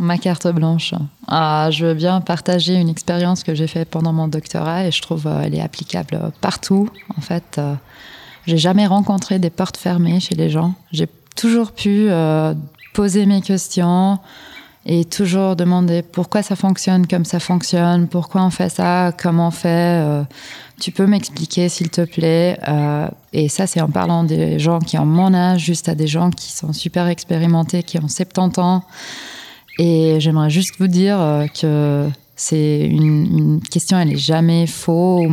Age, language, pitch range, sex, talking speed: 20-39, French, 155-180 Hz, female, 180 wpm